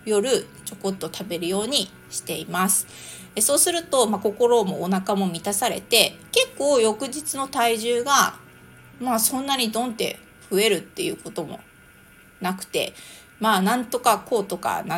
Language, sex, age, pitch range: Japanese, female, 30-49, 190-260 Hz